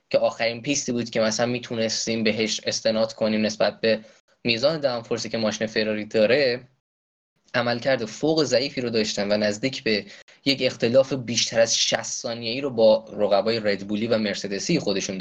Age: 20-39